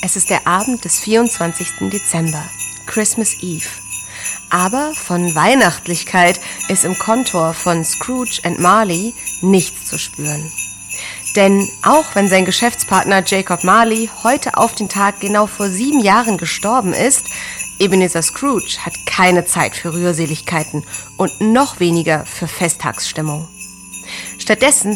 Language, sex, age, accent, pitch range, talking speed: English, female, 30-49, German, 165-215 Hz, 125 wpm